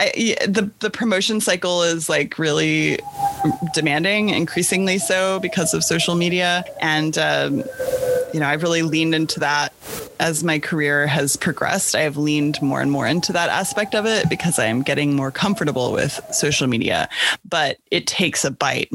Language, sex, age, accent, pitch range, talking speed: English, female, 20-39, American, 155-215 Hz, 170 wpm